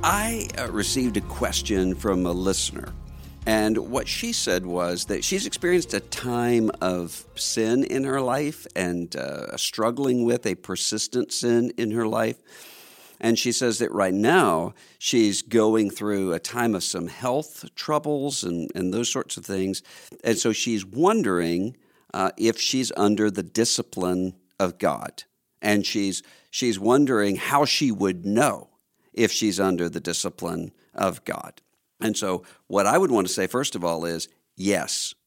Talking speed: 160 wpm